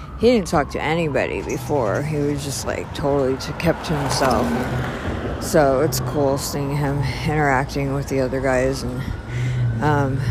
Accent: American